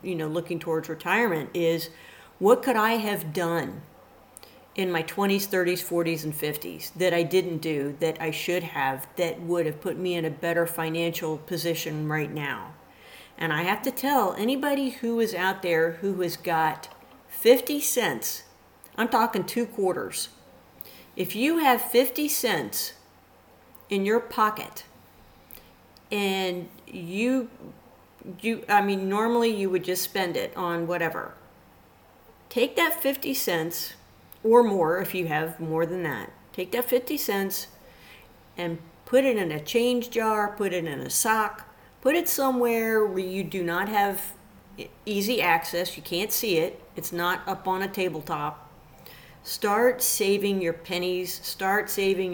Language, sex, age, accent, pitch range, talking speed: English, female, 40-59, American, 170-220 Hz, 150 wpm